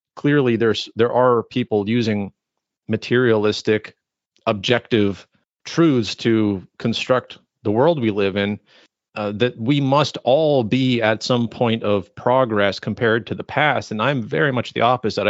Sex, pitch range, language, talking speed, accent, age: male, 105-130 Hz, English, 145 wpm, American, 40-59